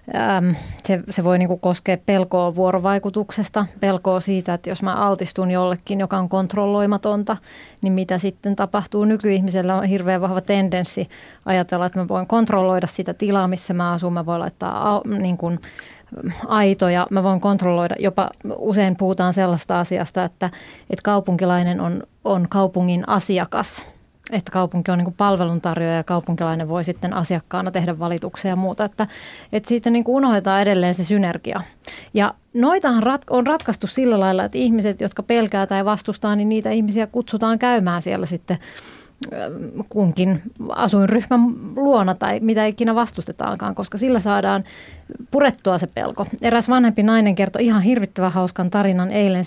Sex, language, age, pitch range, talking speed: female, Finnish, 20-39, 180-210 Hz, 140 wpm